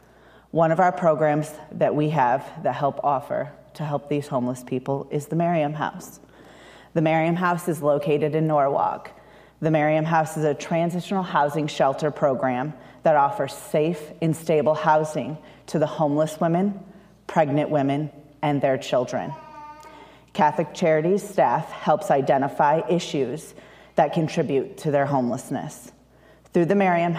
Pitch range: 145-165 Hz